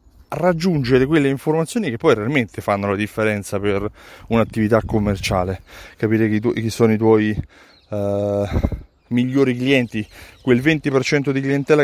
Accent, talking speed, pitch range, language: native, 125 wpm, 105-135 Hz, Italian